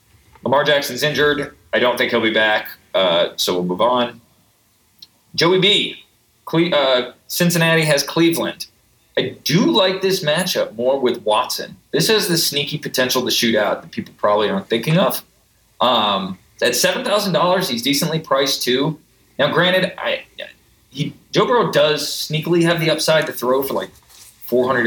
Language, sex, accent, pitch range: English, male, American, 120-170 Hz